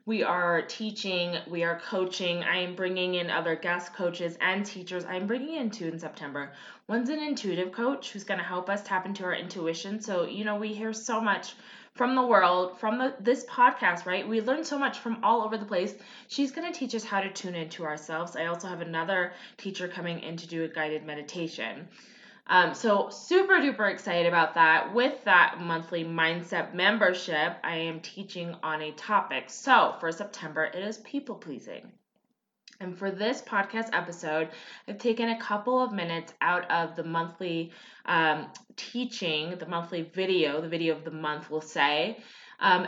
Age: 20-39